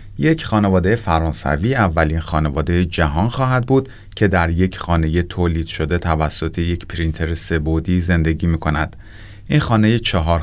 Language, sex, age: Persian, male, 30-49